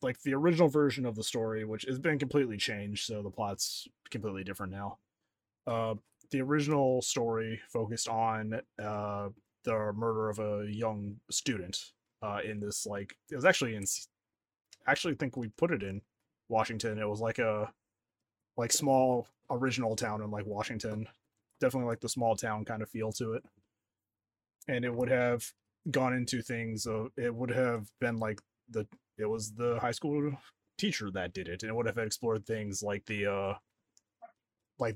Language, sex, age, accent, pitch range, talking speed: English, male, 20-39, American, 105-120 Hz, 175 wpm